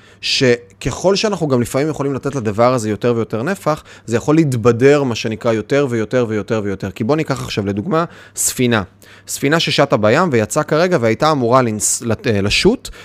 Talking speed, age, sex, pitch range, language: 160 wpm, 20-39, male, 105-150 Hz, Hebrew